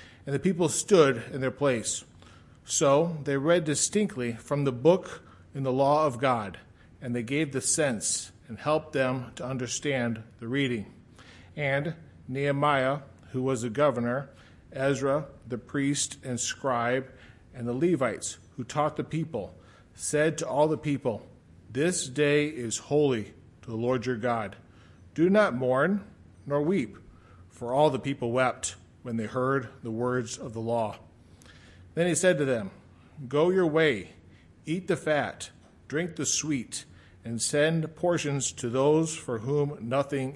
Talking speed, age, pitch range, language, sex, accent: 155 wpm, 40-59, 110-150 Hz, English, male, American